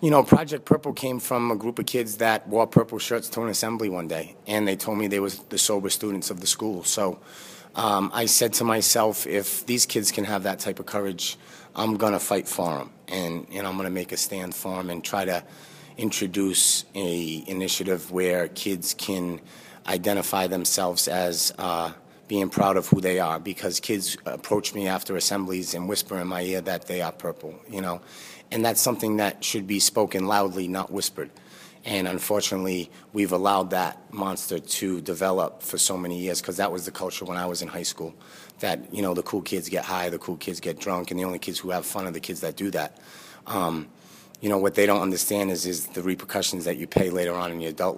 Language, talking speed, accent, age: English, 220 wpm, American, 30-49